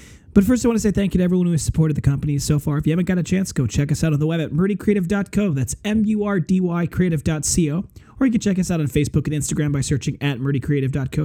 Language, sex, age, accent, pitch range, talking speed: English, male, 20-39, American, 140-180 Hz, 260 wpm